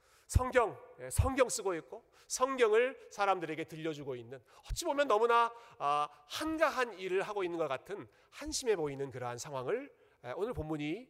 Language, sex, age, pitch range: Korean, male, 40-59, 145-235 Hz